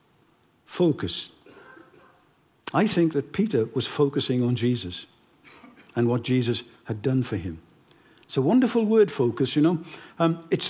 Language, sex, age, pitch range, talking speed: English, male, 60-79, 145-215 Hz, 140 wpm